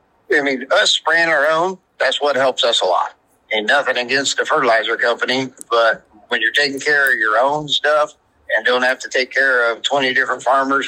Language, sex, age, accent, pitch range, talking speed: English, male, 50-69, American, 120-145 Hz, 200 wpm